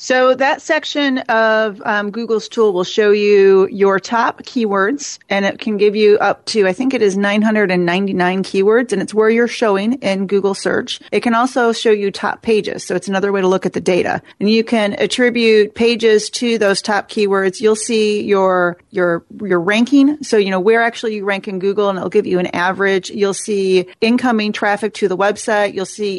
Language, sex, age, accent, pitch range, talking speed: English, female, 40-59, American, 195-225 Hz, 205 wpm